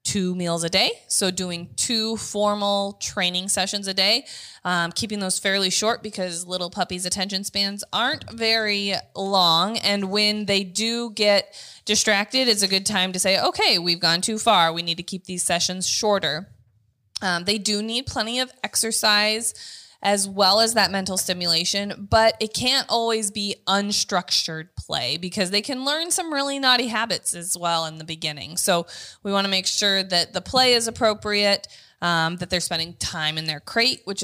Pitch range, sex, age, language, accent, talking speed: 180-220 Hz, female, 20-39, English, American, 180 wpm